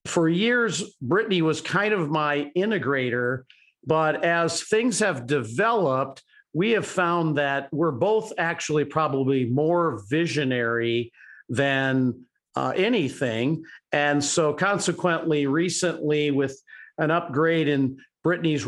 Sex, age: male, 50-69